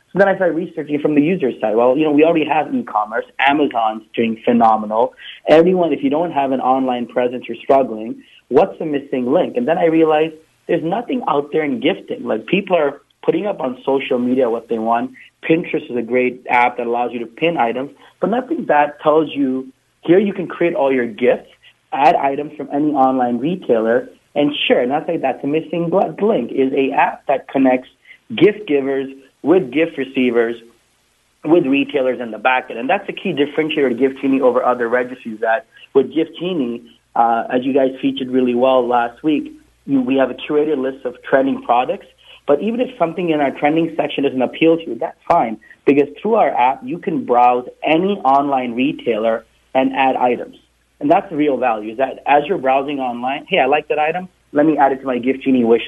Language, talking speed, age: English, 205 wpm, 30-49